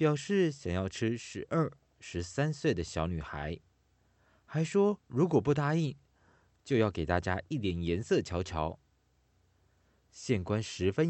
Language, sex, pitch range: Chinese, male, 85-140 Hz